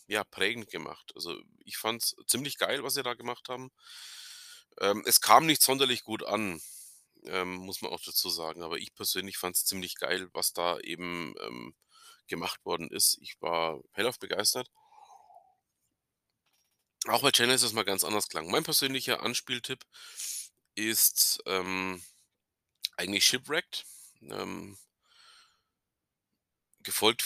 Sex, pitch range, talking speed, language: male, 100-140 Hz, 140 wpm, German